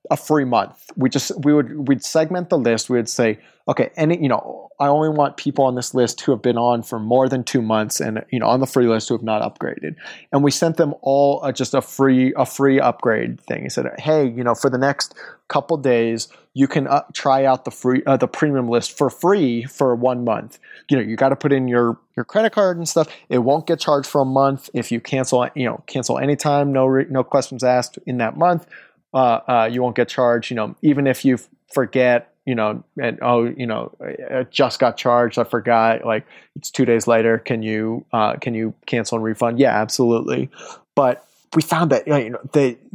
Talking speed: 230 wpm